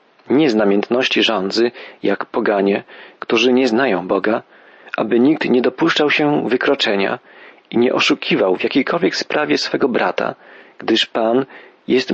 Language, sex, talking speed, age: Polish, male, 135 wpm, 40-59